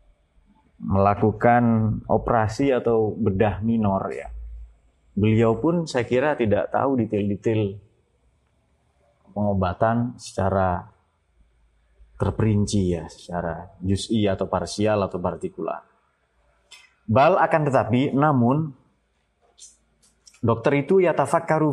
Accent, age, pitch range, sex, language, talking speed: native, 30-49, 95-120 Hz, male, Indonesian, 85 wpm